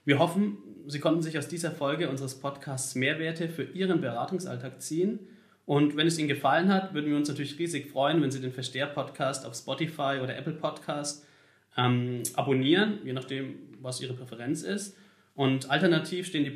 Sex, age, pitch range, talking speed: male, 30-49, 130-165 Hz, 170 wpm